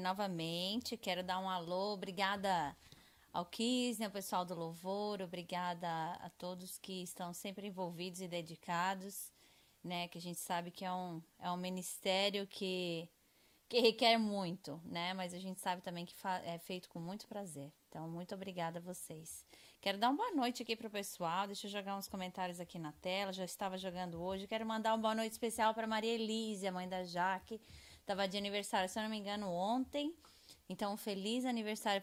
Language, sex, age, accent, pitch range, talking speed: Portuguese, female, 20-39, Brazilian, 180-215 Hz, 185 wpm